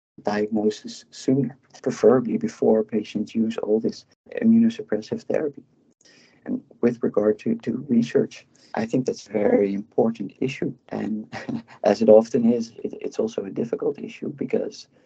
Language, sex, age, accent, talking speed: English, male, 50-69, Dutch, 135 wpm